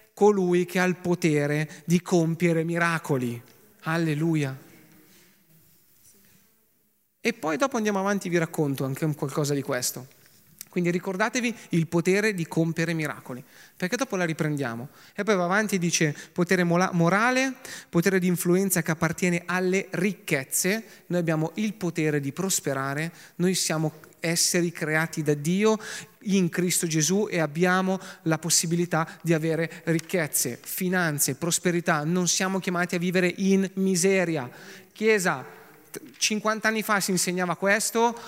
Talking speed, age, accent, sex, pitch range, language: 135 wpm, 30-49, native, male, 160-190 Hz, Italian